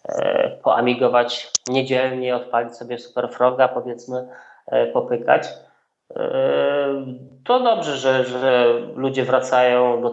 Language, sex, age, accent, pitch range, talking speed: Polish, male, 20-39, native, 120-135 Hz, 105 wpm